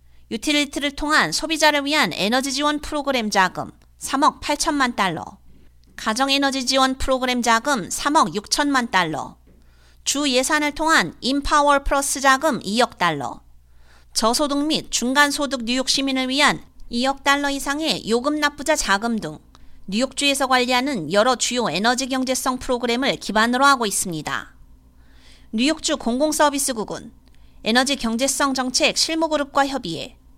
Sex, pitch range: female, 210-285 Hz